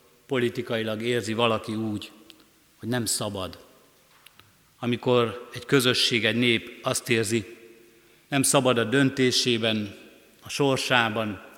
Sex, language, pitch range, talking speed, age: male, Hungarian, 110-125 Hz, 105 wpm, 50-69